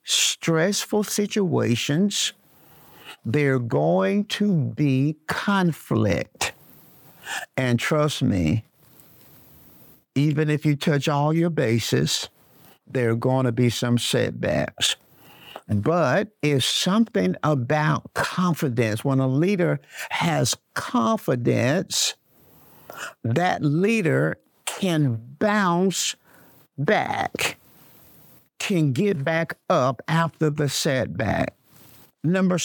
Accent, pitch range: American, 130-170 Hz